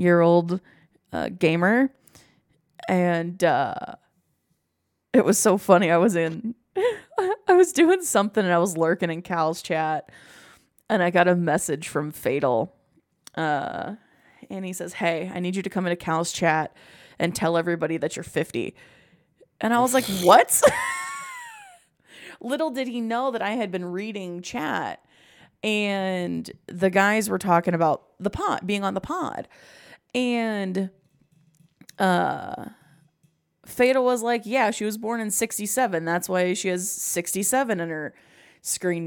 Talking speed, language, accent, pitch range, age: 145 wpm, English, American, 175-240 Hz, 20-39